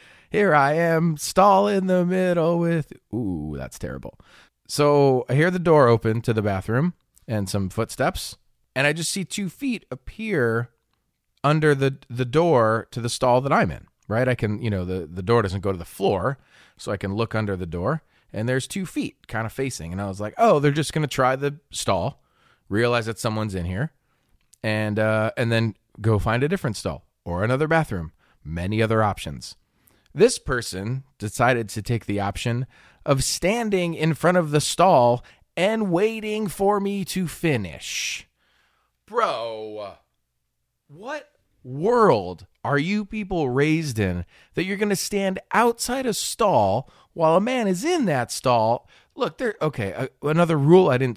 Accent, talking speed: American, 175 wpm